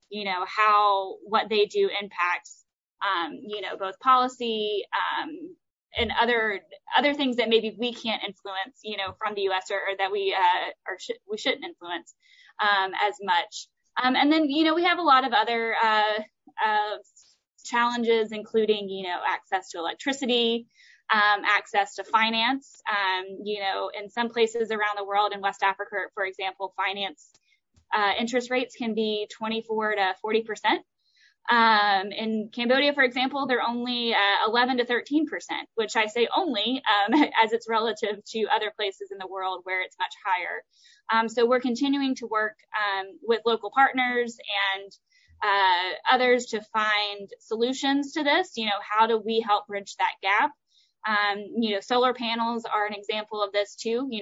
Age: 10-29